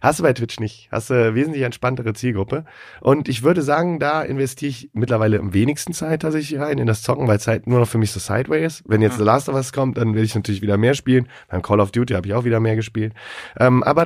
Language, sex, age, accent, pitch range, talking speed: German, male, 30-49, German, 110-135 Hz, 265 wpm